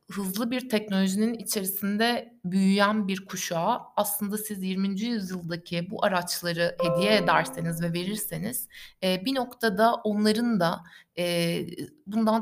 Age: 60-79